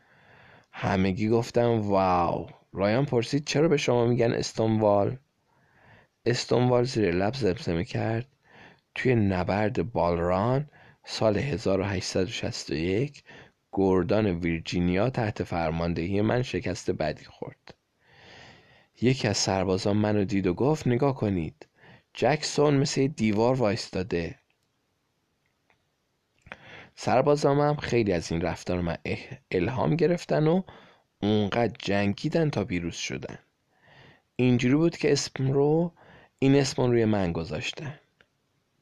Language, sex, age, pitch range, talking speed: Persian, male, 20-39, 95-135 Hz, 100 wpm